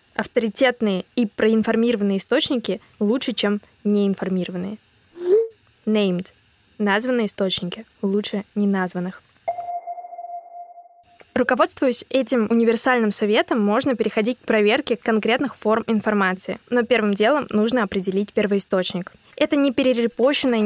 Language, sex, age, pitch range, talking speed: Russian, female, 20-39, 195-245 Hz, 95 wpm